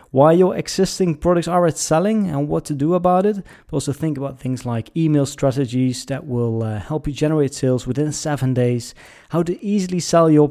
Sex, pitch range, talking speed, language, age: male, 125-165 Hz, 205 wpm, English, 20-39